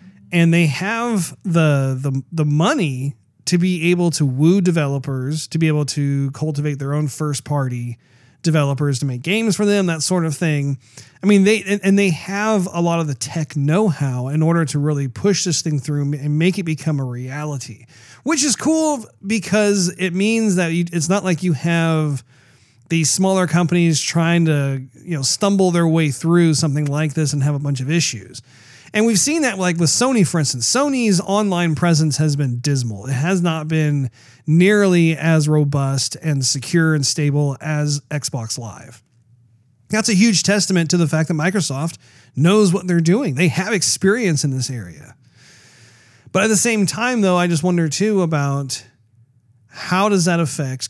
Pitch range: 135-180 Hz